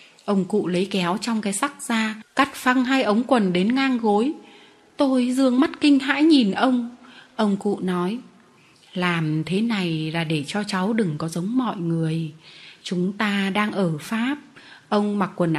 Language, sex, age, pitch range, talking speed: Vietnamese, female, 20-39, 180-235 Hz, 175 wpm